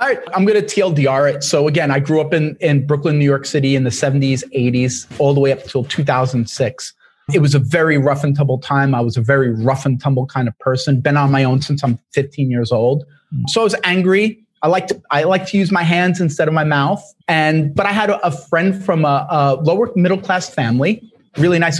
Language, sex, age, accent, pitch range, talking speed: English, male, 30-49, American, 135-180 Hz, 235 wpm